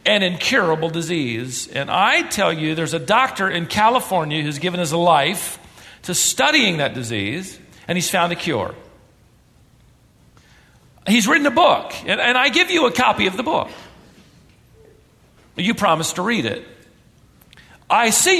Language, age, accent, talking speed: English, 50-69, American, 155 wpm